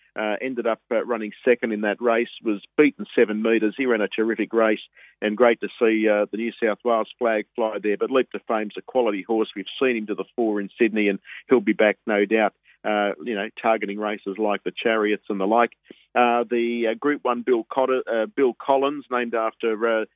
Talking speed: 220 wpm